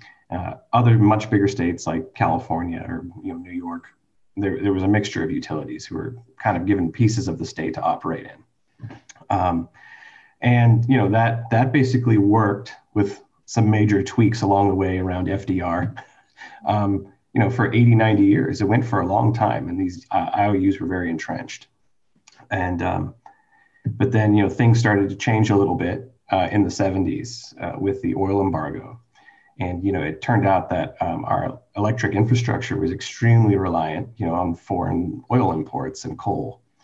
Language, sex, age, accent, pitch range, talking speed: English, male, 30-49, American, 95-120 Hz, 180 wpm